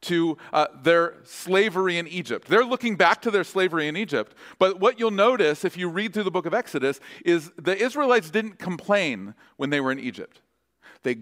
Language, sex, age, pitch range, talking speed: English, male, 40-59, 145-220 Hz, 200 wpm